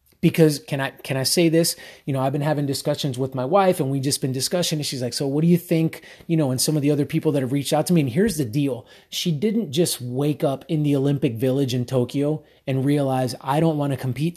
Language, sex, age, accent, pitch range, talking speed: English, male, 30-49, American, 130-160 Hz, 270 wpm